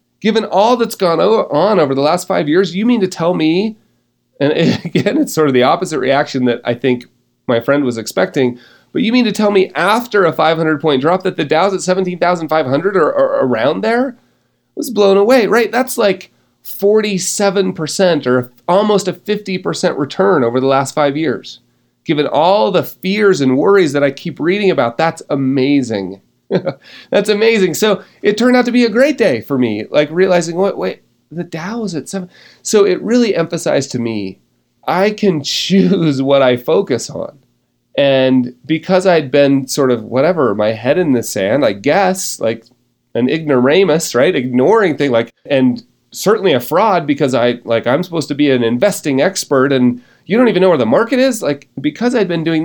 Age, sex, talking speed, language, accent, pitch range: 30-49, male, 185 wpm, English, American, 130-200 Hz